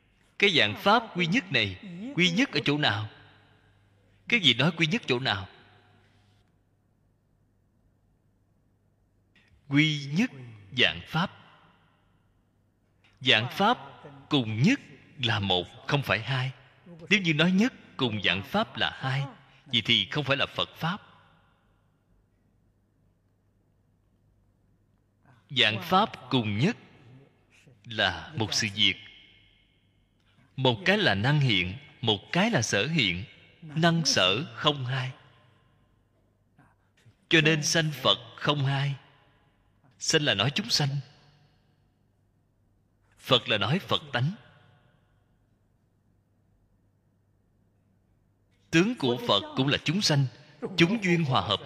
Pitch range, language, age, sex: 100-145 Hz, Vietnamese, 20-39, male